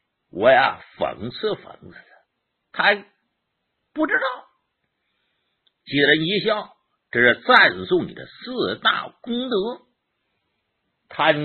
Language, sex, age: Chinese, male, 60-79